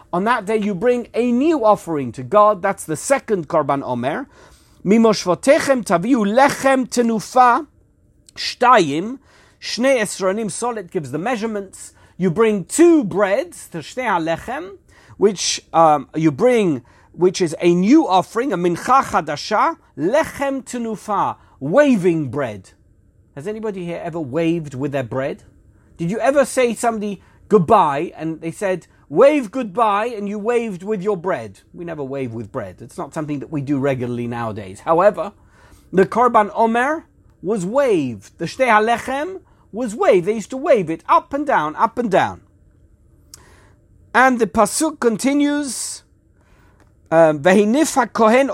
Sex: male